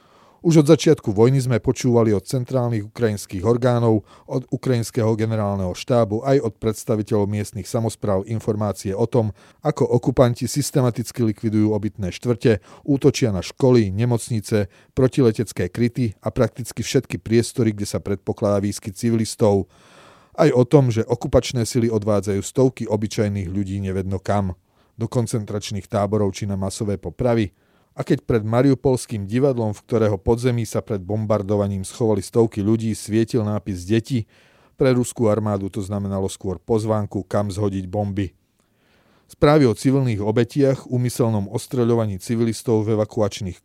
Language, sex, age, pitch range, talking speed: Slovak, male, 40-59, 100-120 Hz, 135 wpm